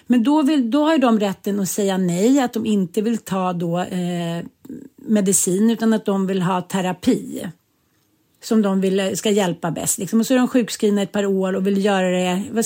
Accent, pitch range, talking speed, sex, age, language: native, 185-230 Hz, 210 wpm, female, 40-59, Swedish